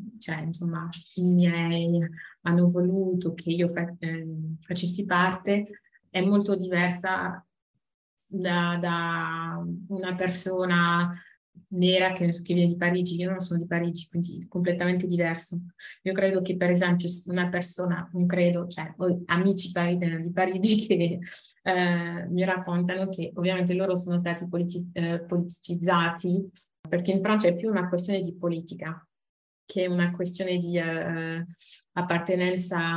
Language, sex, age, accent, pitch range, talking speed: Italian, female, 20-39, native, 170-185 Hz, 130 wpm